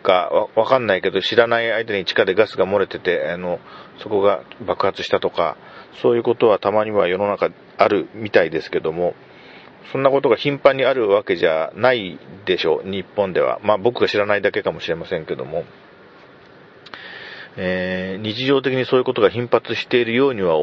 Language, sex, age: Japanese, male, 40-59